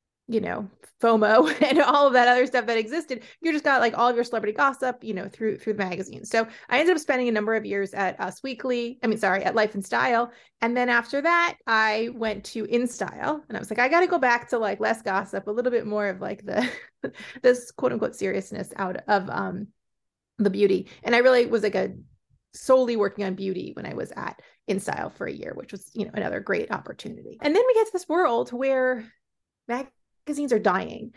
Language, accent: English, American